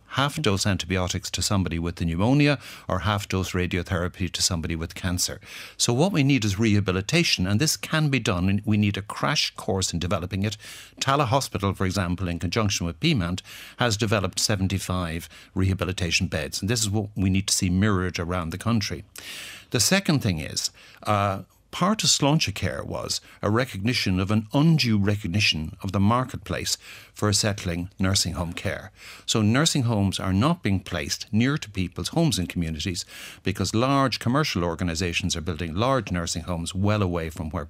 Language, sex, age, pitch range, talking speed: English, male, 60-79, 90-115 Hz, 175 wpm